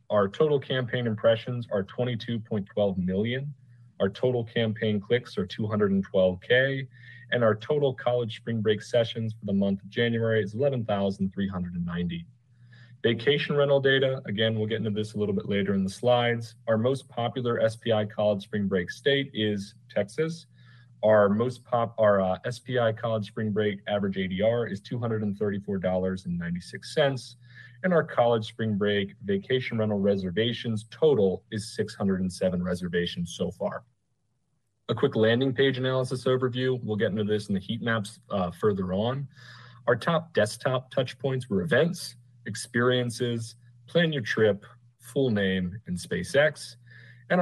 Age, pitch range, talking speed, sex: 30-49, 105-125 Hz, 140 wpm, male